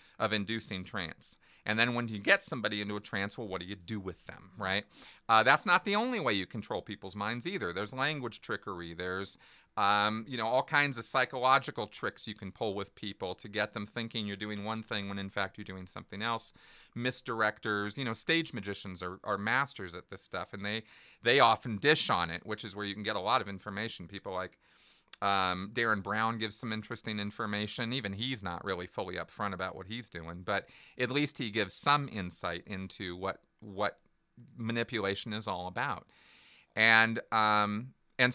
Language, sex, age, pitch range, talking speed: English, male, 40-59, 100-120 Hz, 200 wpm